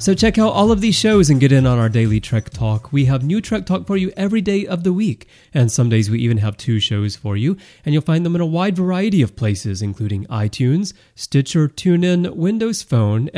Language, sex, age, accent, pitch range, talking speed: English, male, 30-49, American, 115-175 Hz, 240 wpm